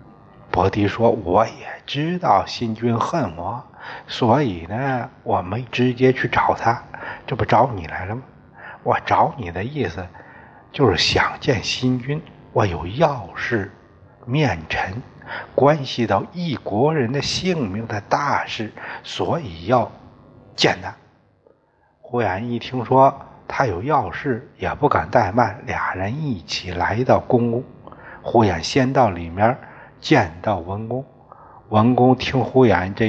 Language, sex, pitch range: Chinese, male, 95-130 Hz